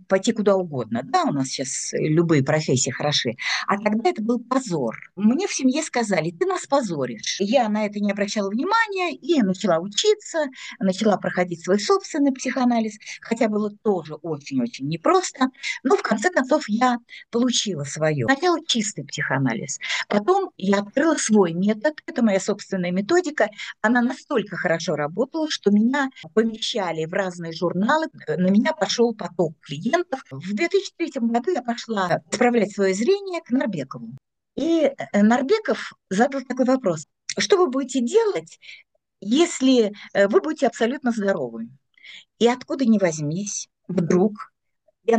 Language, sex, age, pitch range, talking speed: Russian, female, 50-69, 180-270 Hz, 140 wpm